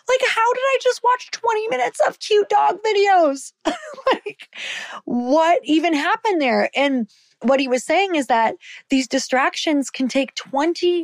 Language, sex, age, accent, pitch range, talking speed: English, female, 20-39, American, 205-300 Hz, 160 wpm